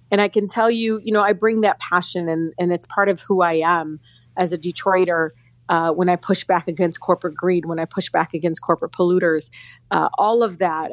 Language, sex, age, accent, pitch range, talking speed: English, female, 30-49, American, 165-195 Hz, 225 wpm